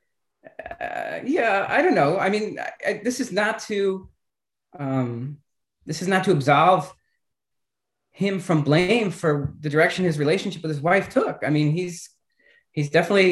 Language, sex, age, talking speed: English, male, 30-49, 160 wpm